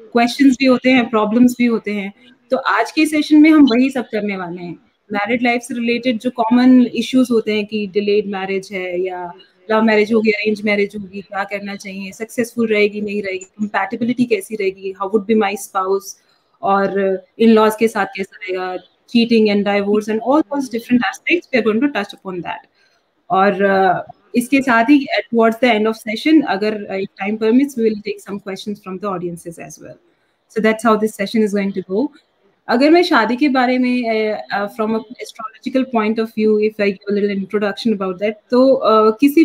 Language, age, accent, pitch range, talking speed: Hindi, 30-49, native, 205-250 Hz, 125 wpm